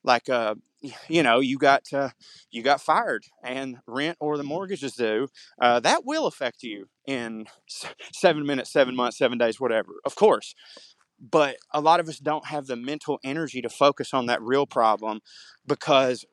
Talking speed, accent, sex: 175 wpm, American, male